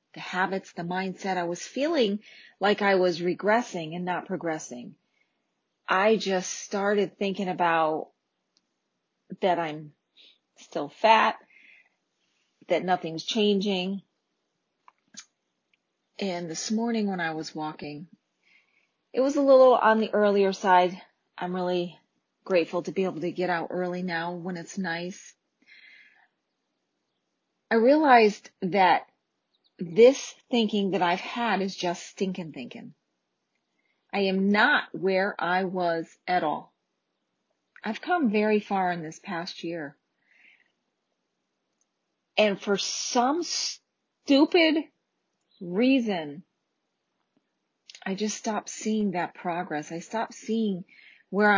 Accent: American